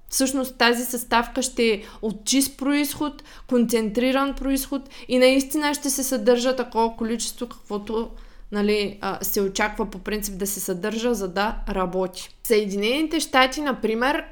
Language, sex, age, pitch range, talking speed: Bulgarian, female, 20-39, 210-260 Hz, 135 wpm